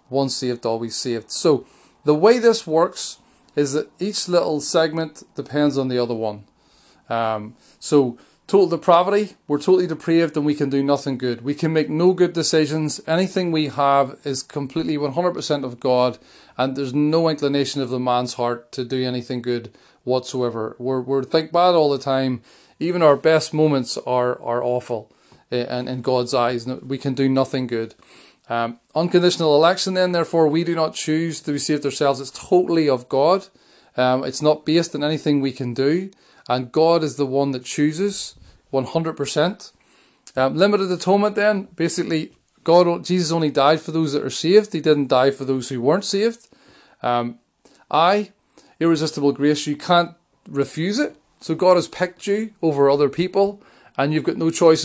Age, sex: 30-49, male